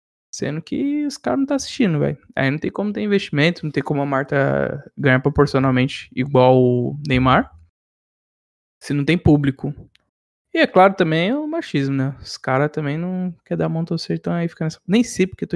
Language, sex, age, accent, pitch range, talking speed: Portuguese, male, 20-39, Brazilian, 135-185 Hz, 210 wpm